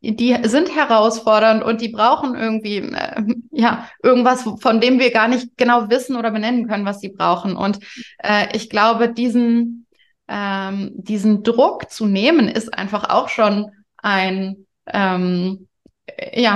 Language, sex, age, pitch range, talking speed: German, female, 20-39, 195-235 Hz, 145 wpm